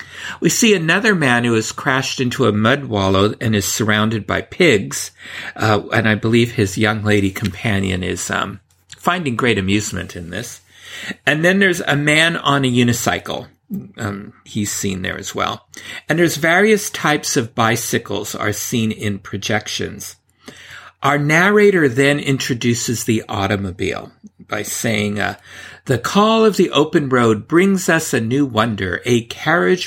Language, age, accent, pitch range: English, 50-69, American, 105-155 Hz